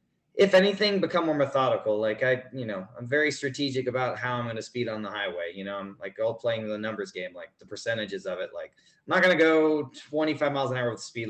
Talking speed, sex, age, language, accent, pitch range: 255 wpm, male, 20-39, English, American, 110-135 Hz